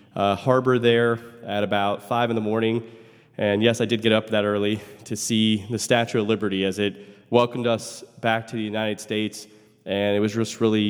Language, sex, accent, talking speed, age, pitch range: English, male, American, 205 wpm, 20-39, 105-135 Hz